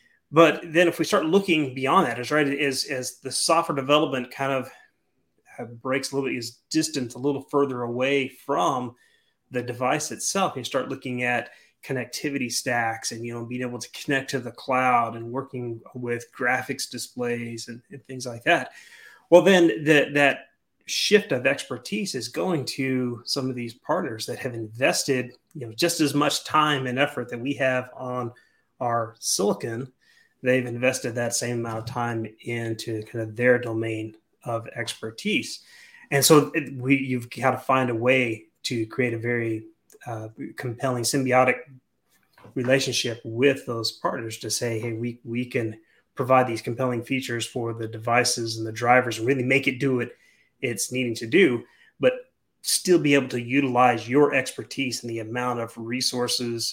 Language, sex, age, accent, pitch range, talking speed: English, male, 30-49, American, 115-140 Hz, 170 wpm